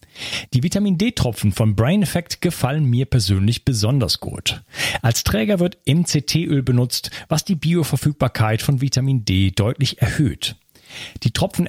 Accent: German